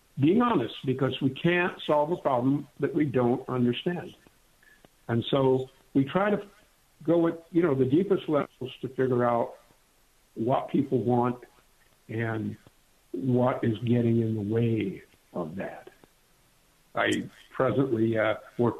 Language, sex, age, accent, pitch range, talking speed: English, male, 60-79, American, 120-145 Hz, 135 wpm